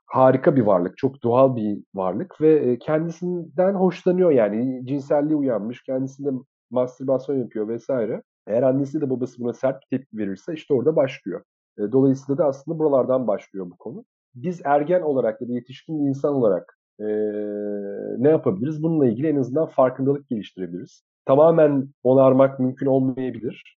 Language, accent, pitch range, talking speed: Turkish, native, 120-150 Hz, 140 wpm